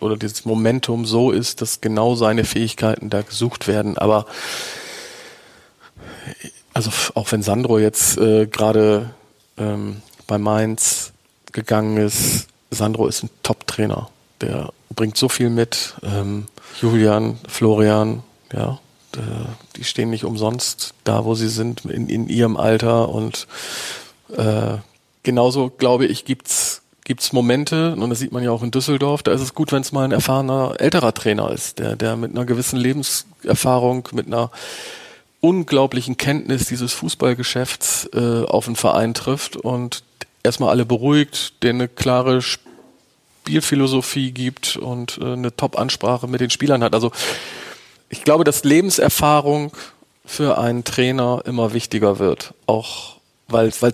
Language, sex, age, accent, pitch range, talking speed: German, male, 40-59, German, 110-130 Hz, 140 wpm